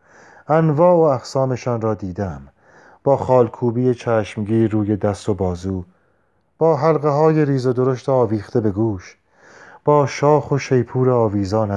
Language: Persian